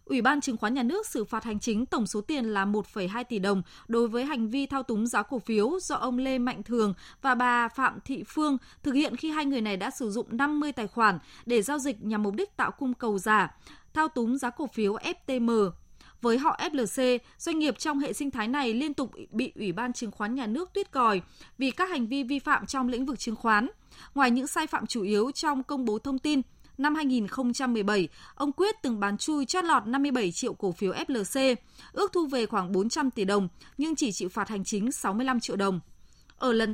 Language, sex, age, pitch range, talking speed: Vietnamese, female, 20-39, 210-280 Hz, 225 wpm